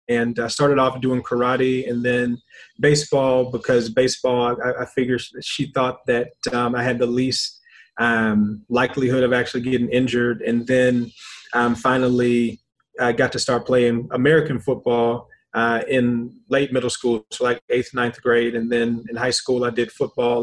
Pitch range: 120-140 Hz